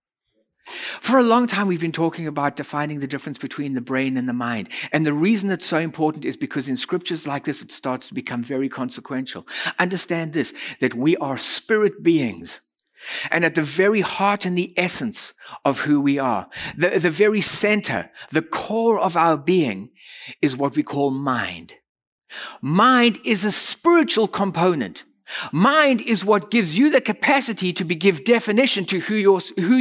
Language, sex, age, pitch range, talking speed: English, male, 60-79, 180-245 Hz, 175 wpm